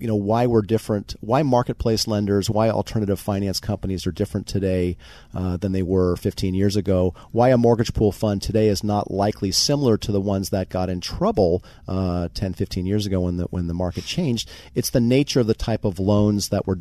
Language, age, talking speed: English, 40-59, 215 wpm